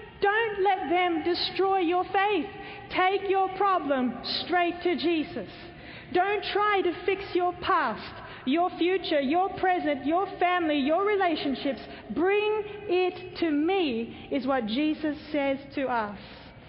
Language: English